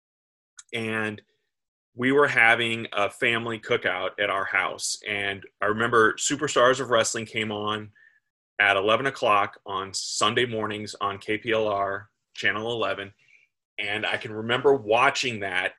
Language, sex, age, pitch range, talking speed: English, male, 30-49, 110-140 Hz, 130 wpm